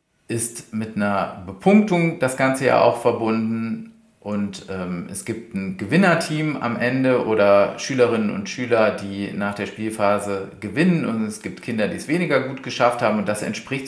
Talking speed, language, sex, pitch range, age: 170 wpm, German, male, 110-135 Hz, 40-59